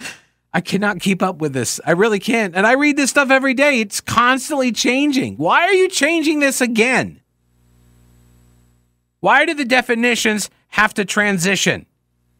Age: 50-69